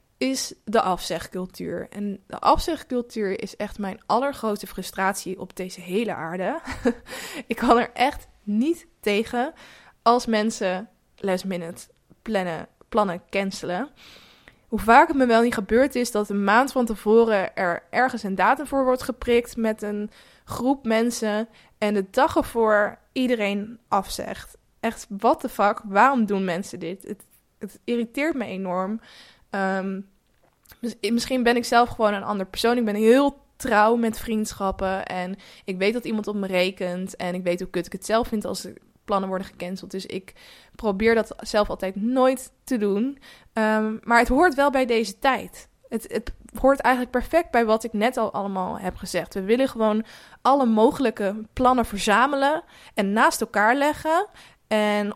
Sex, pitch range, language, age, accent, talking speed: female, 200-250 Hz, Dutch, 20-39, Dutch, 165 wpm